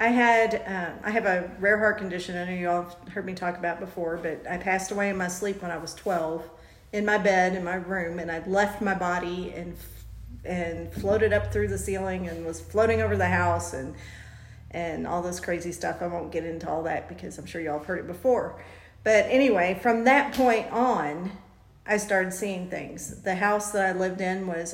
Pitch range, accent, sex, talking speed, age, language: 170-210 Hz, American, female, 220 wpm, 40-59, English